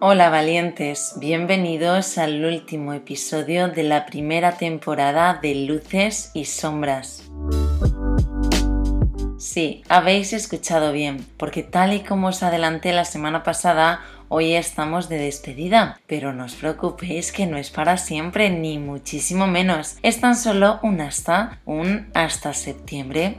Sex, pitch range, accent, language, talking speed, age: female, 150-180 Hz, Spanish, Spanish, 130 wpm, 20-39